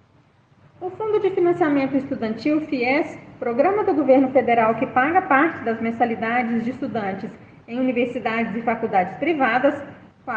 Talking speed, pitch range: 135 wpm, 225-310 Hz